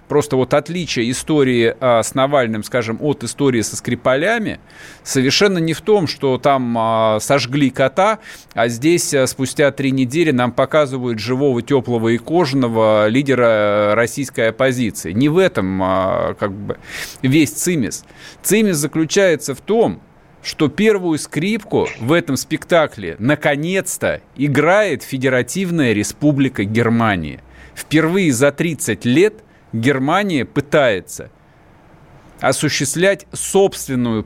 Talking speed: 110 wpm